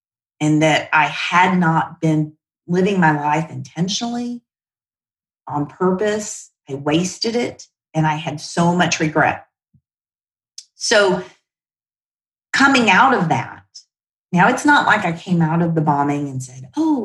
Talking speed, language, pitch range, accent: 135 wpm, English, 150-185 Hz, American